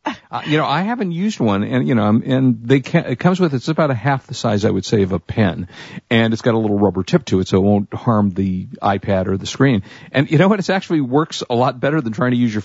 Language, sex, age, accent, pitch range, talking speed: English, male, 50-69, American, 100-125 Hz, 290 wpm